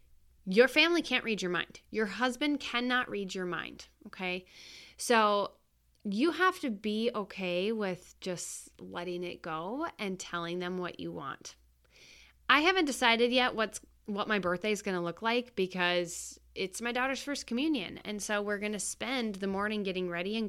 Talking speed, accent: 175 wpm, American